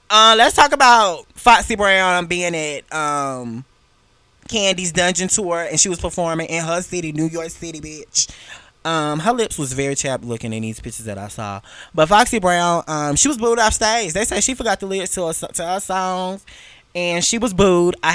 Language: English